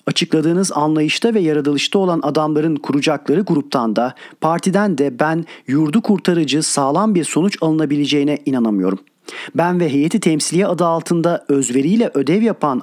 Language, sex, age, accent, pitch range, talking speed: Turkish, male, 40-59, native, 145-185 Hz, 130 wpm